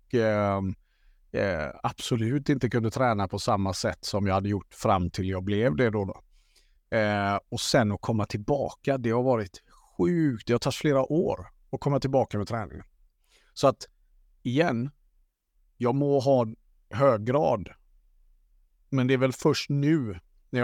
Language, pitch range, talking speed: Swedish, 100-130 Hz, 150 wpm